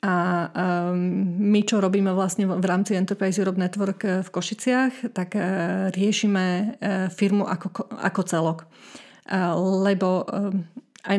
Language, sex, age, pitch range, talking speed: Slovak, female, 30-49, 180-205 Hz, 105 wpm